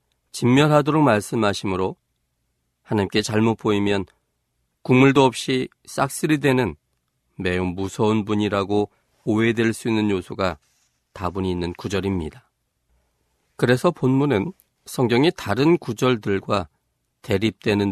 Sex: male